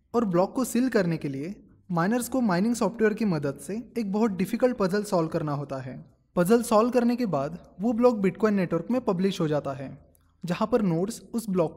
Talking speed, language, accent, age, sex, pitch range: 210 wpm, Hindi, native, 20-39, male, 160-225 Hz